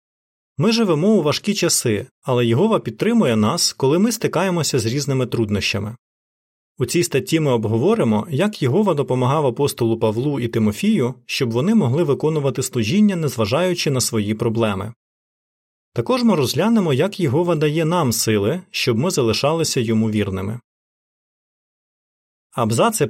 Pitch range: 115-165 Hz